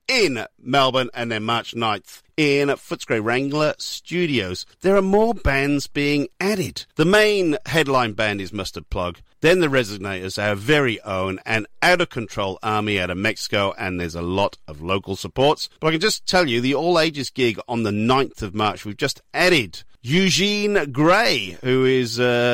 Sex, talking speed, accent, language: male, 170 wpm, British, English